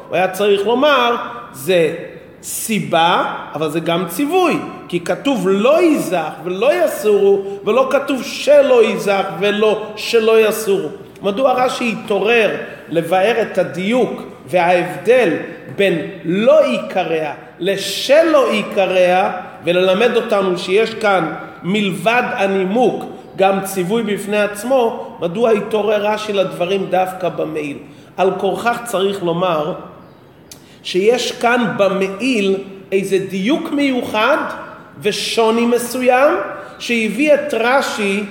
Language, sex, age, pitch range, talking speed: Hebrew, male, 40-59, 185-240 Hz, 105 wpm